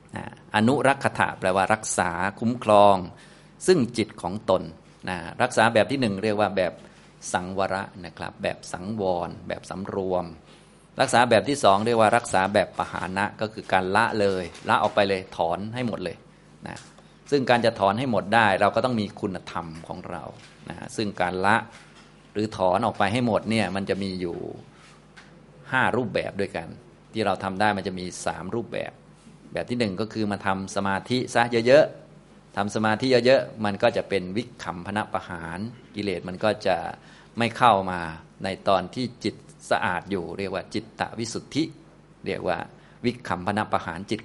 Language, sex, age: Thai, male, 30-49